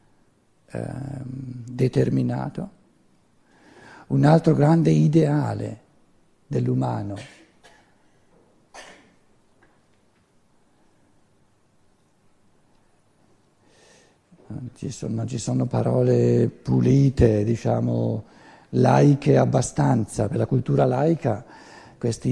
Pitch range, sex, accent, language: 105-150 Hz, male, native, Italian